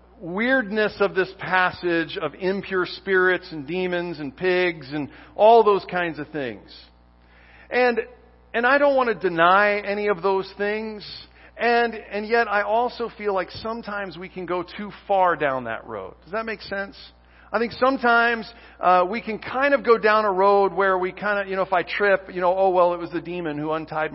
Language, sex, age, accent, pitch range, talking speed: English, male, 40-59, American, 175-225 Hz, 195 wpm